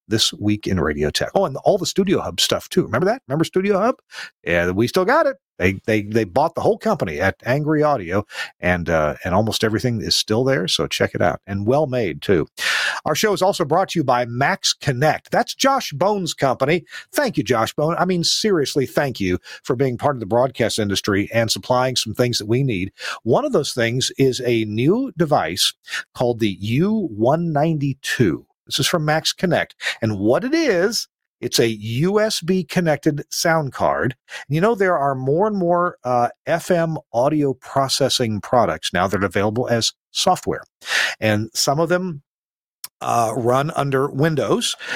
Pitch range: 115-160 Hz